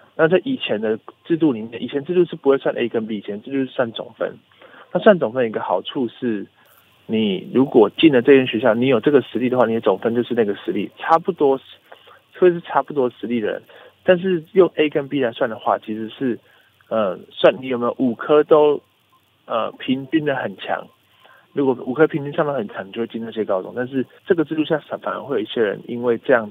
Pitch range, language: 115-165 Hz, Chinese